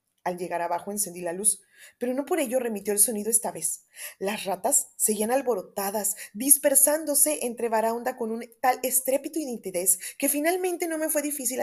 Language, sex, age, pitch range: Spanish, female, 20-39, 195-275 Hz